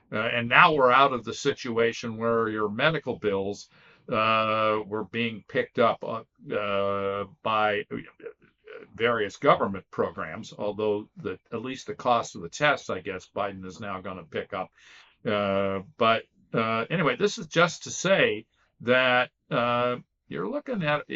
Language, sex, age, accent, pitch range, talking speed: English, male, 50-69, American, 110-145 Hz, 155 wpm